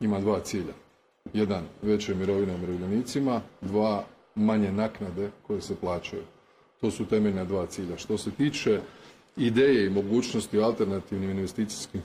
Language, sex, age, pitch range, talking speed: Croatian, male, 40-59, 95-115 Hz, 130 wpm